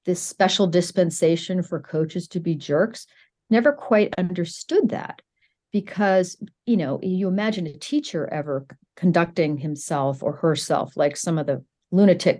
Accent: American